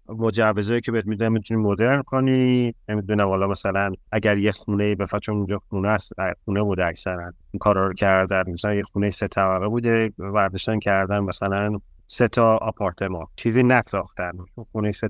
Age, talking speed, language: 30-49, 155 wpm, Persian